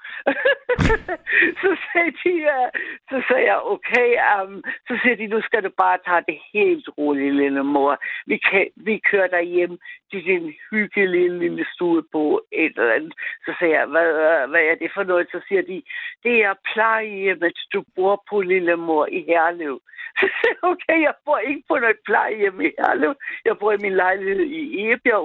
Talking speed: 175 wpm